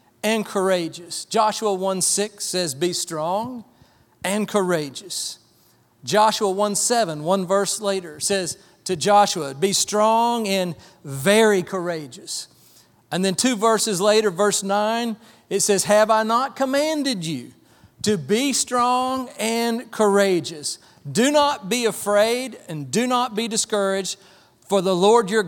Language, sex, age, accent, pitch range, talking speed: English, male, 40-59, American, 180-230 Hz, 130 wpm